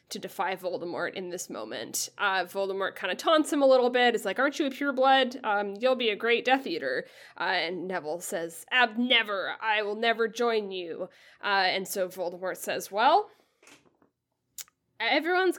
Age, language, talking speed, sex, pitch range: 10-29, English, 175 wpm, female, 215-290 Hz